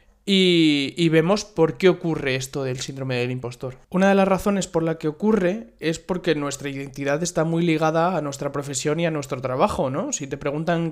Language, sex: Spanish, male